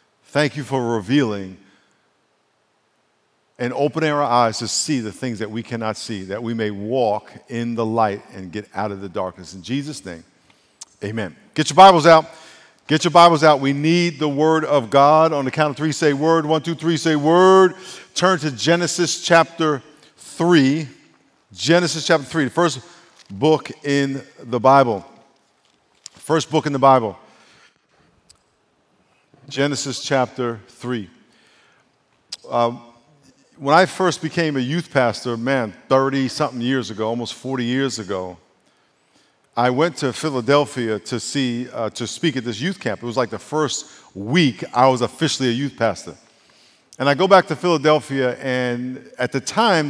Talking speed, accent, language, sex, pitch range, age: 160 wpm, American, English, male, 120-155 Hz, 50-69